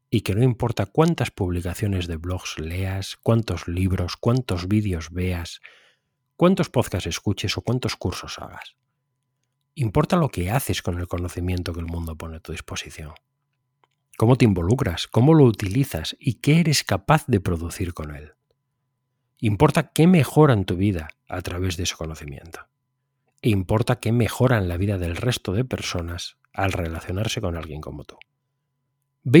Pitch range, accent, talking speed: 90-140 Hz, Spanish, 155 wpm